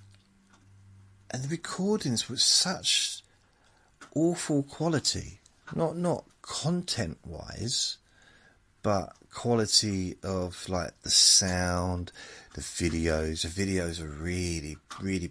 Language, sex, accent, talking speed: English, male, British, 95 wpm